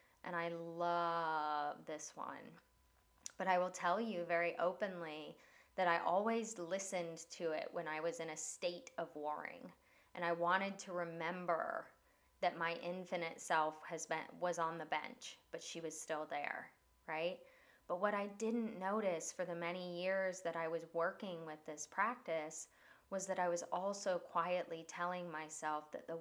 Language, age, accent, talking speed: English, 20-39, American, 165 wpm